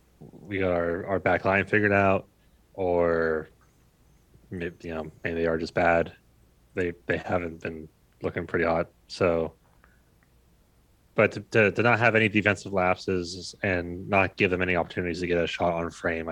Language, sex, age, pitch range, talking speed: English, male, 30-49, 85-100 Hz, 170 wpm